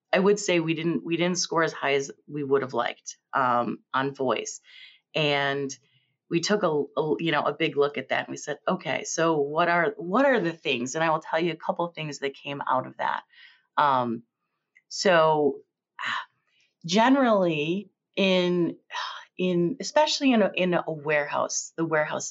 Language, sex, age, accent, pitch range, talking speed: English, female, 30-49, American, 155-225 Hz, 185 wpm